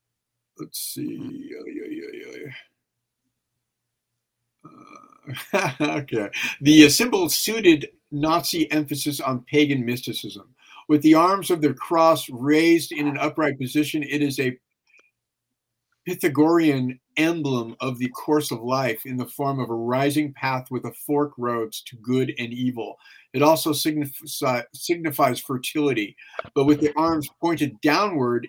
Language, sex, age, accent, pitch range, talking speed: English, male, 50-69, American, 130-155 Hz, 135 wpm